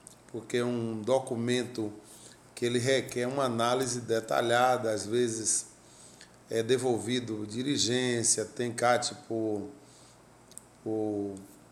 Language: Portuguese